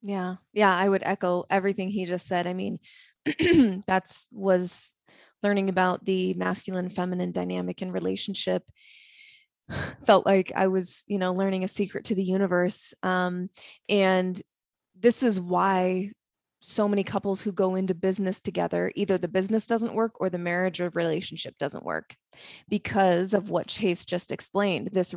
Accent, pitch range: American, 180-200 Hz